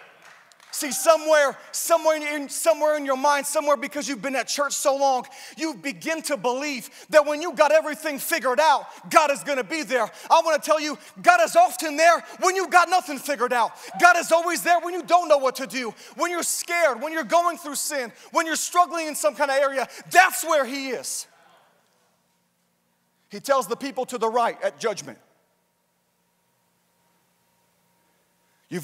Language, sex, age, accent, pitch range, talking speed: English, male, 30-49, American, 190-305 Hz, 185 wpm